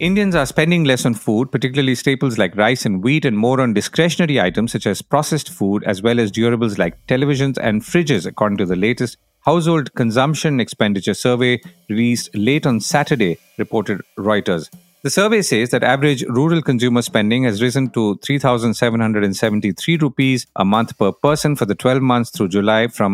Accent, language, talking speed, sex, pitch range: Indian, English, 175 wpm, male, 110-145 Hz